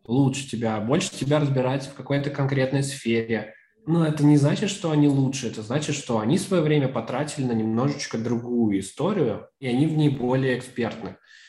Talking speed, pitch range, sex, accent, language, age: 170 wpm, 130-165 Hz, male, native, Russian, 20-39